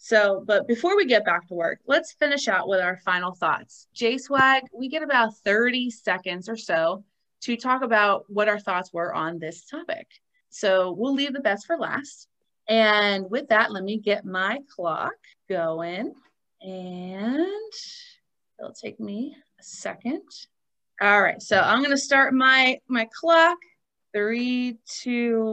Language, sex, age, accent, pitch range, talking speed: English, female, 30-49, American, 195-270 Hz, 155 wpm